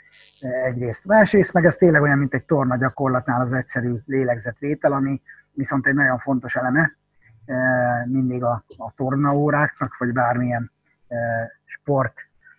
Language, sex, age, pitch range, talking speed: Hungarian, male, 30-49, 125-150 Hz, 130 wpm